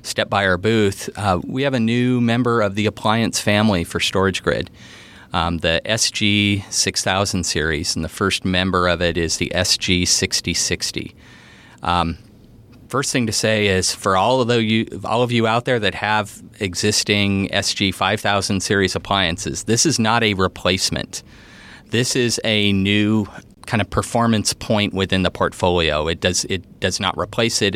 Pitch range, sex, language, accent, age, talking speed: 90-105 Hz, male, English, American, 40-59, 175 wpm